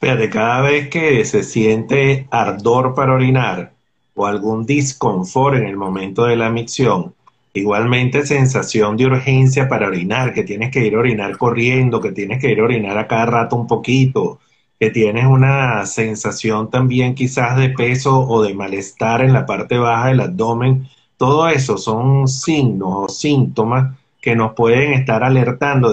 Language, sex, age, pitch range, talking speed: Spanish, male, 30-49, 115-135 Hz, 165 wpm